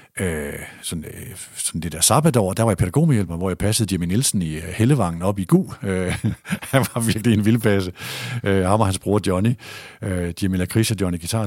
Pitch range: 100-125 Hz